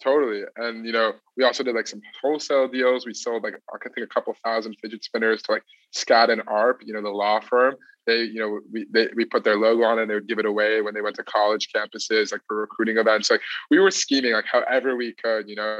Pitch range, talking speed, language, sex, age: 110-125 Hz, 260 wpm, English, male, 20-39